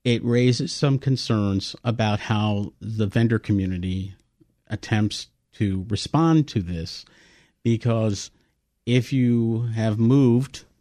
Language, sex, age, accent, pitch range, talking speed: English, male, 50-69, American, 100-115 Hz, 105 wpm